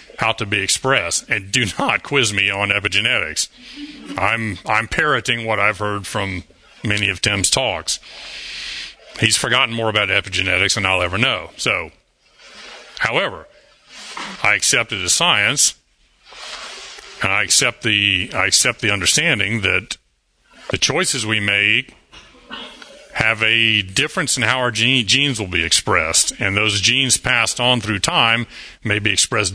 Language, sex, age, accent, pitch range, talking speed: English, male, 40-59, American, 100-125 Hz, 145 wpm